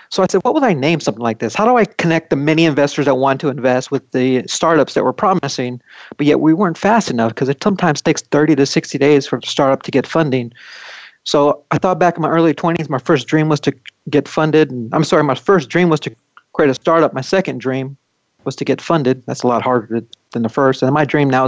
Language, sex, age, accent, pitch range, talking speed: English, male, 40-59, American, 130-155 Hz, 255 wpm